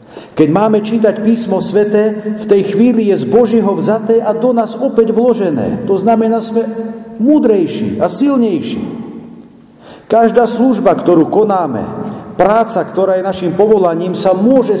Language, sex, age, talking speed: Slovak, male, 50-69, 140 wpm